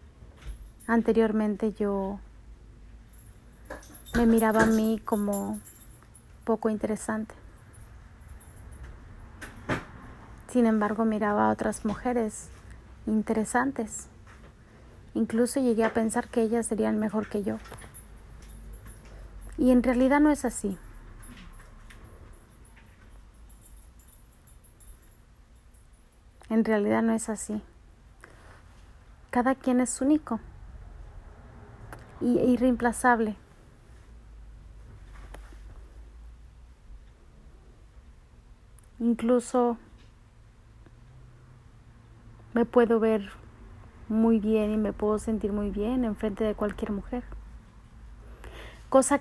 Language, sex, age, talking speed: Spanish, female, 30-49, 75 wpm